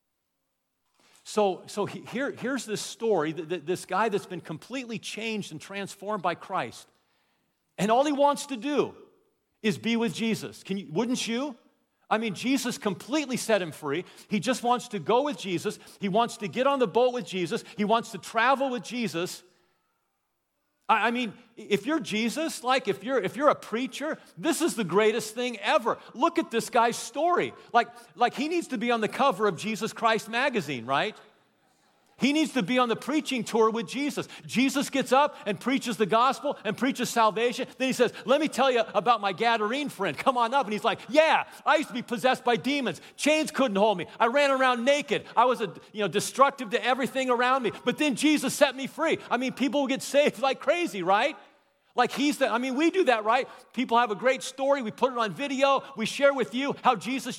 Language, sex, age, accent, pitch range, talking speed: English, male, 50-69, American, 215-270 Hz, 205 wpm